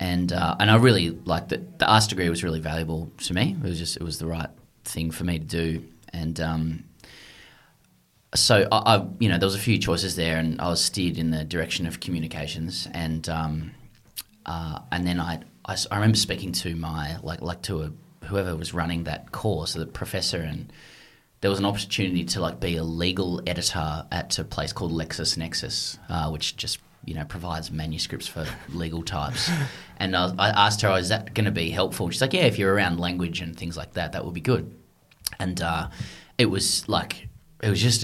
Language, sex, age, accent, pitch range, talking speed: English, male, 20-39, Australian, 80-95 Hz, 210 wpm